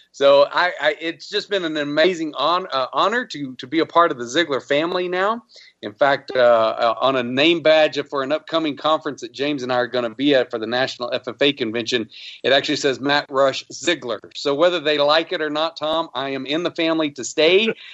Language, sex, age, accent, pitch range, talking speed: English, male, 40-59, American, 125-165 Hz, 230 wpm